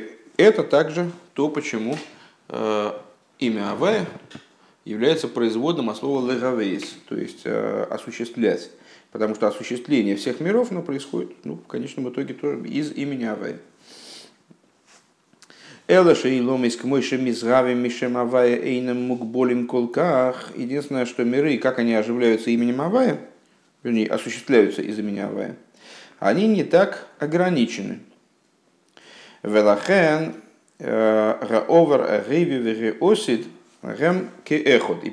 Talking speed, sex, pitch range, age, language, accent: 80 wpm, male, 110-145 Hz, 40-59, Russian, native